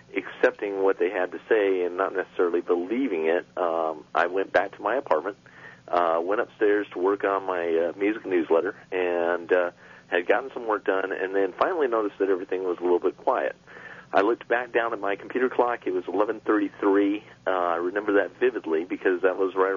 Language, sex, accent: English, male, American